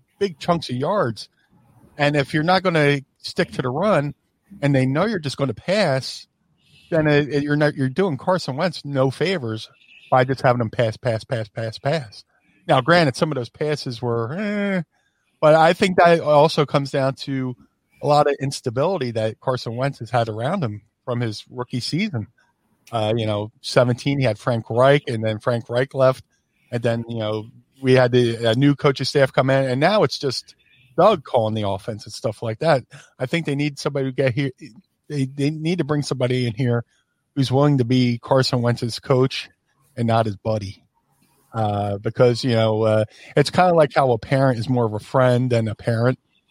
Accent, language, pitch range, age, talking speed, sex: American, English, 115-145 Hz, 40-59, 205 wpm, male